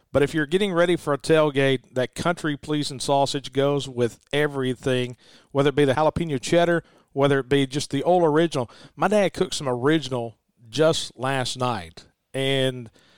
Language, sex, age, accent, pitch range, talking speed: English, male, 50-69, American, 130-165 Hz, 165 wpm